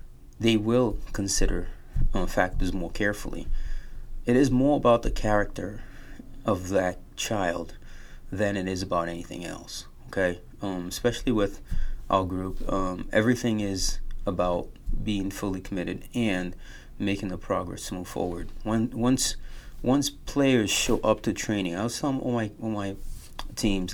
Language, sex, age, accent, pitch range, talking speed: English, male, 30-49, American, 95-120 Hz, 145 wpm